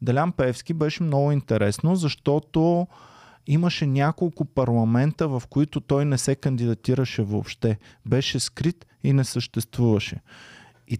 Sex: male